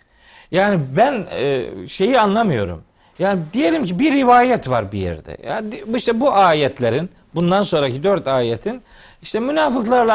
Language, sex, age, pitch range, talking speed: Turkish, male, 50-69, 135-200 Hz, 130 wpm